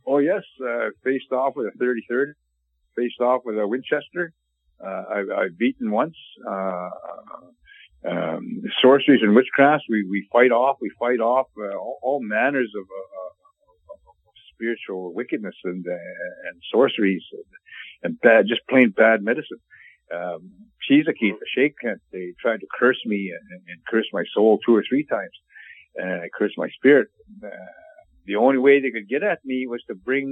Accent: American